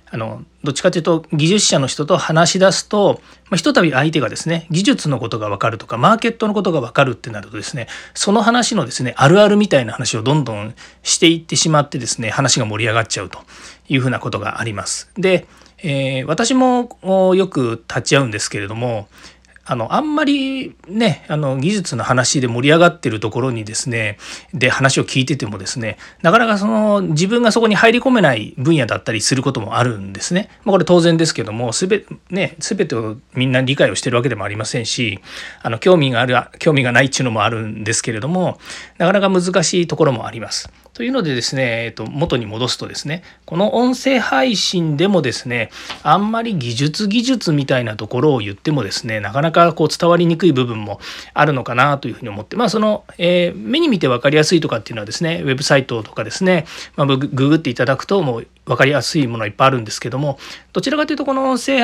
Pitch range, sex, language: 120-190 Hz, male, Japanese